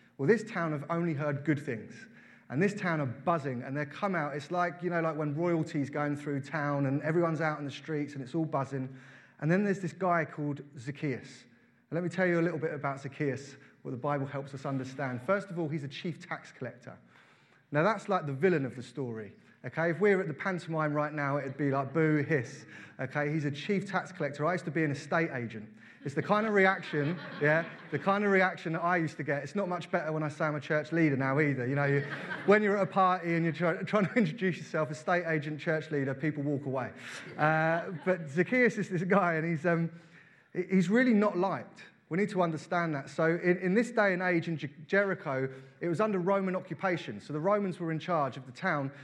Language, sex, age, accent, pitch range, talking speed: English, male, 30-49, British, 145-180 Hz, 235 wpm